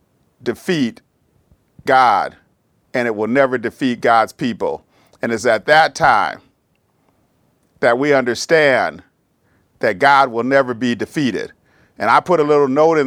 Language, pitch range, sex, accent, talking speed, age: English, 130-160 Hz, male, American, 140 wpm, 40-59